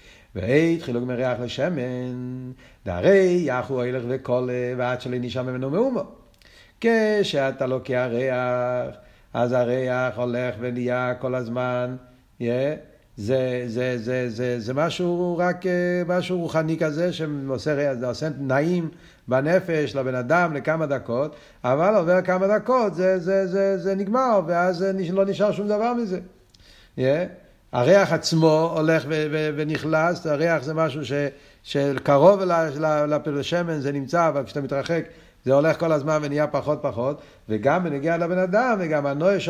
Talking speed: 130 wpm